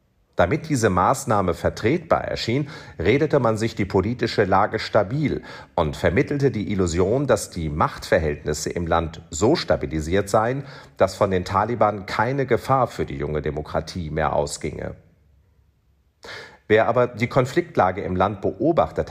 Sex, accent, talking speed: male, German, 135 wpm